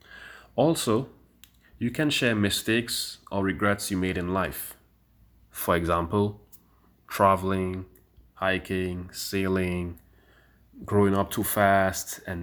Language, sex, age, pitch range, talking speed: English, male, 30-49, 95-110 Hz, 100 wpm